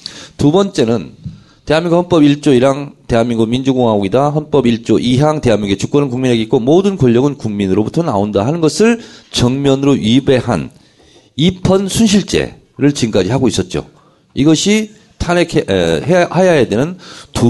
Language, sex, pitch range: Korean, male, 125-175 Hz